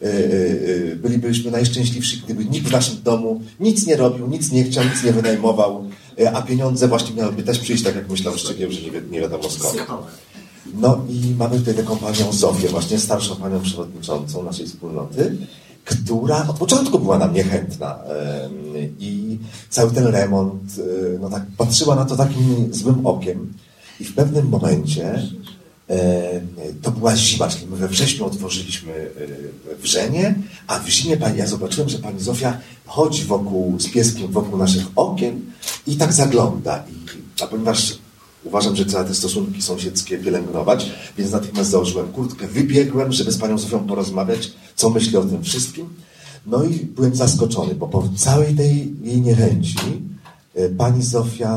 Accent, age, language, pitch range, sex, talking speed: native, 40-59, Polish, 100-130 Hz, male, 150 wpm